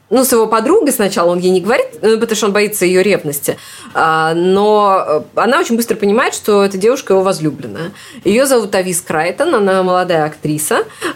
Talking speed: 170 wpm